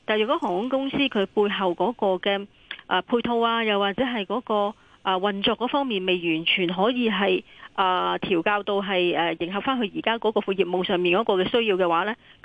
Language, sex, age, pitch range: Chinese, female, 30-49, 185-230 Hz